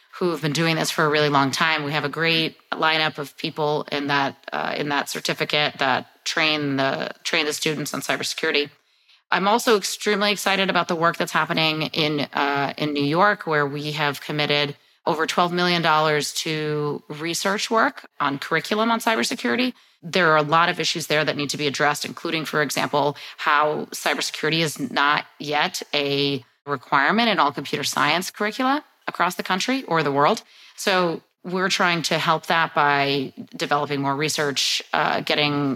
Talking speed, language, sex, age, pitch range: 175 wpm, English, female, 30-49, 145-175 Hz